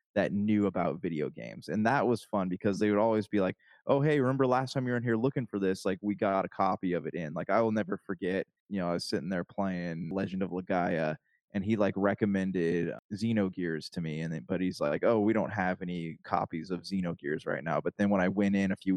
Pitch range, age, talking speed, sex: 90-105 Hz, 20-39, 260 wpm, male